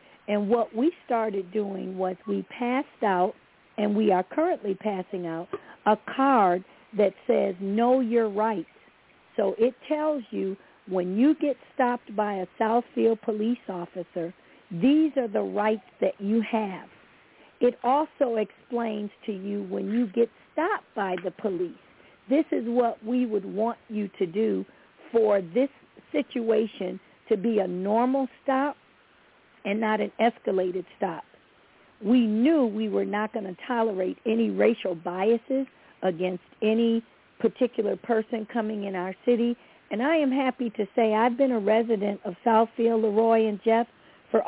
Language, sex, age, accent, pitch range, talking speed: English, female, 50-69, American, 200-245 Hz, 150 wpm